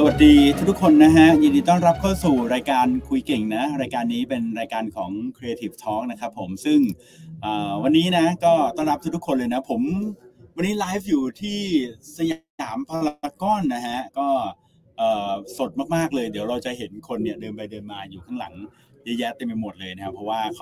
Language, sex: Thai, male